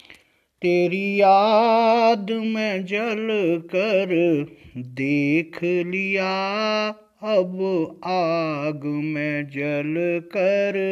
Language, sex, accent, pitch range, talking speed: Hindi, male, native, 170-260 Hz, 65 wpm